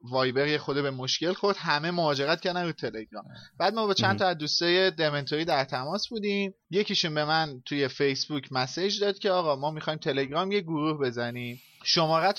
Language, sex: Persian, male